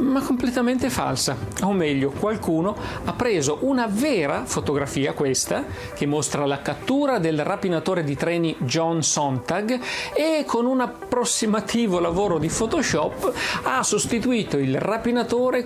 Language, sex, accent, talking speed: Italian, male, native, 125 wpm